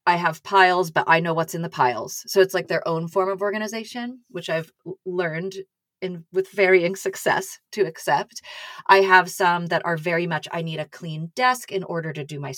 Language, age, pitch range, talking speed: English, 30-49, 165-205 Hz, 205 wpm